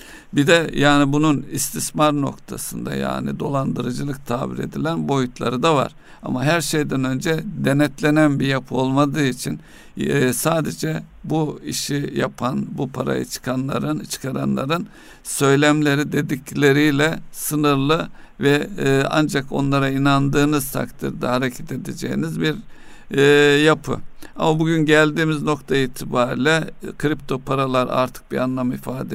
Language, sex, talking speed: Turkish, male, 110 wpm